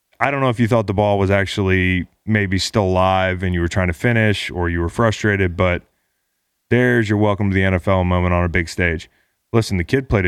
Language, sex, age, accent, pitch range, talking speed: English, male, 30-49, American, 90-110 Hz, 230 wpm